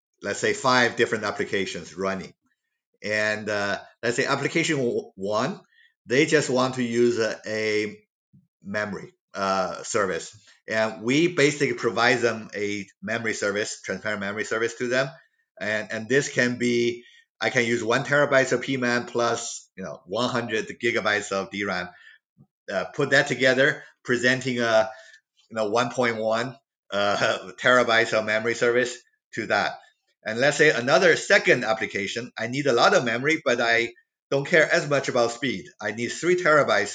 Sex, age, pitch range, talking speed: male, 50-69, 115-140 Hz, 160 wpm